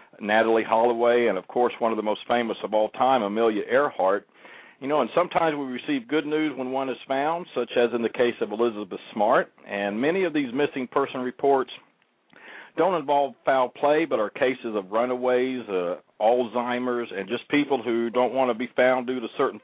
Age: 50-69